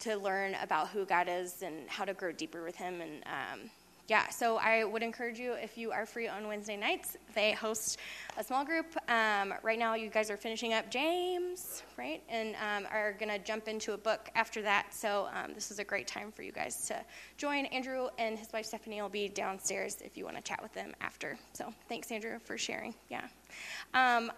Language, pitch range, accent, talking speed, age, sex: English, 210-270 Hz, American, 220 wpm, 20-39, female